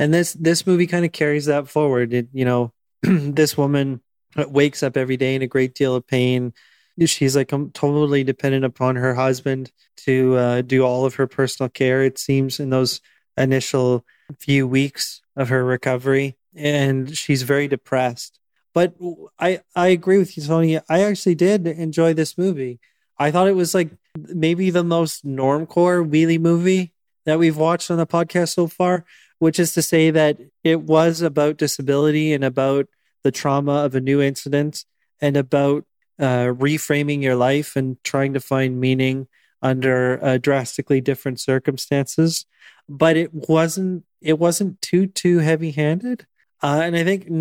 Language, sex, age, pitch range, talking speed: English, male, 20-39, 135-165 Hz, 165 wpm